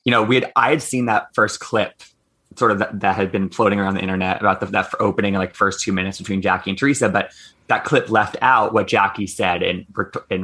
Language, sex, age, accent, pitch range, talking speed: English, male, 20-39, American, 95-115 Hz, 245 wpm